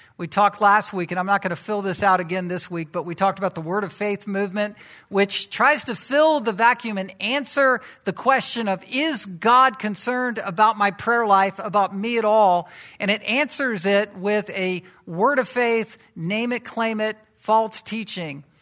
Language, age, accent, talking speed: English, 50-69, American, 195 wpm